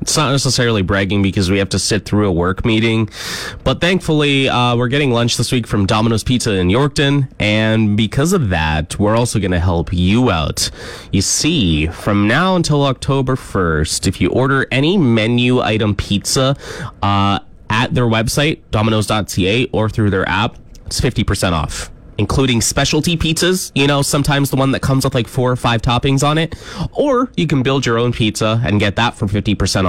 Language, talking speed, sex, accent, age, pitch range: English, 185 wpm, male, American, 20-39, 100-140 Hz